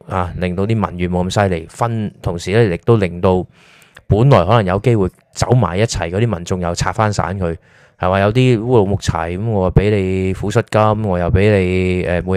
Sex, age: male, 20-39